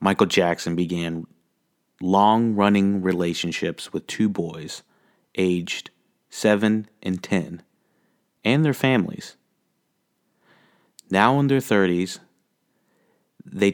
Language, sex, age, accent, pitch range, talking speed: English, male, 30-49, American, 85-105 Hz, 85 wpm